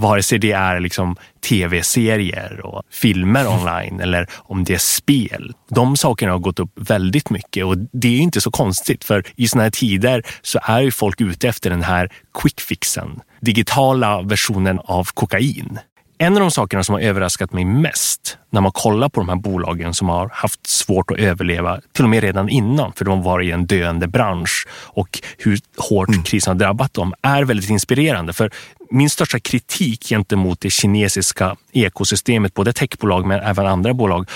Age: 30-49